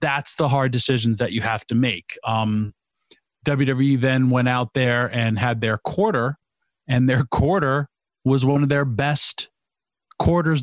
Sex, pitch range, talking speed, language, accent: male, 115-145 Hz, 160 wpm, English, American